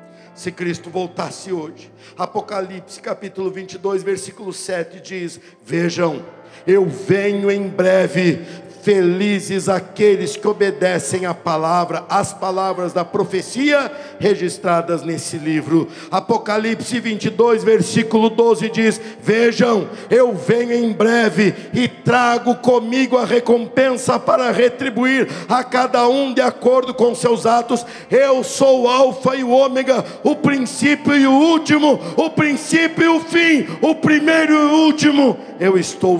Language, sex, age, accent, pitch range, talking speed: Portuguese, male, 60-79, Brazilian, 190-250 Hz, 130 wpm